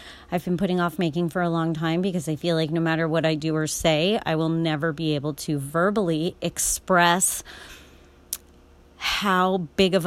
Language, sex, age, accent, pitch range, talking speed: English, female, 30-49, American, 155-190 Hz, 185 wpm